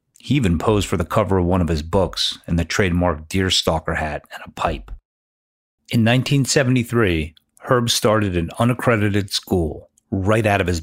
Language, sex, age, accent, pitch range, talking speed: English, male, 40-59, American, 85-110 Hz, 165 wpm